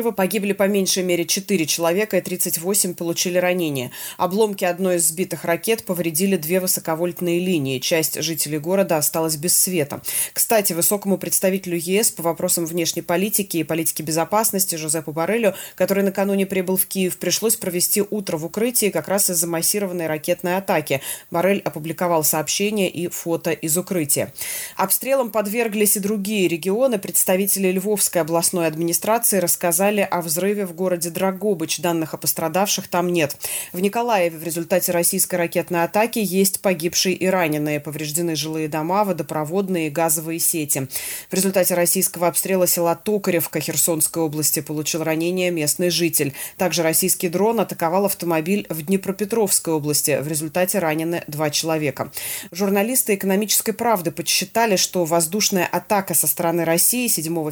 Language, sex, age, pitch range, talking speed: Russian, female, 20-39, 165-195 Hz, 140 wpm